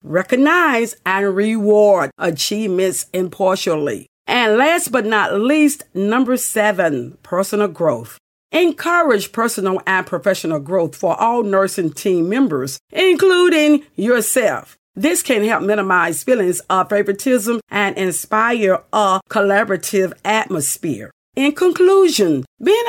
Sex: female